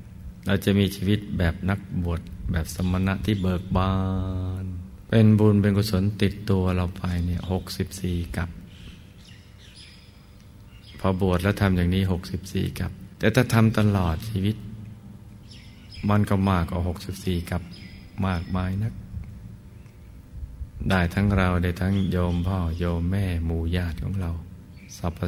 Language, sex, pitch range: Thai, male, 90-100 Hz